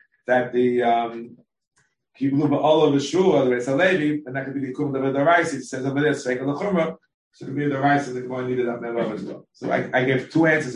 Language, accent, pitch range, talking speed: English, American, 130-150 Hz, 225 wpm